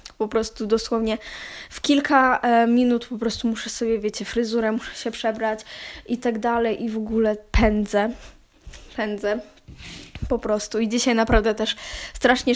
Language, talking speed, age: Polish, 145 wpm, 10-29